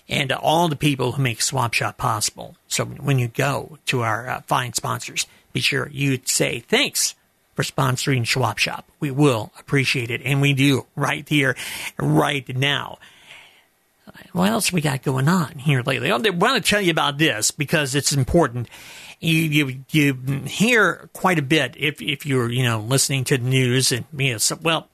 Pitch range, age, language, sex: 130-160 Hz, 50-69, English, male